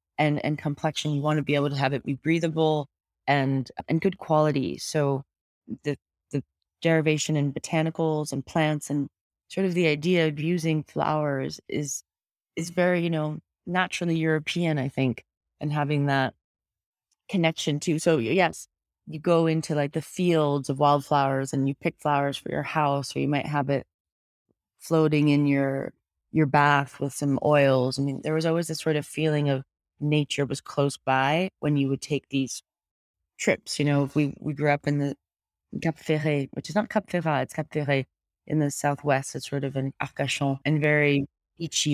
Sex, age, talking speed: female, 30-49, 180 wpm